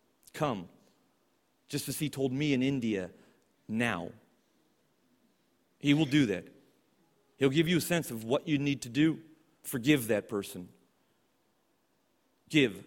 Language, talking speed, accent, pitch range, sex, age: English, 130 wpm, American, 115-150 Hz, male, 40-59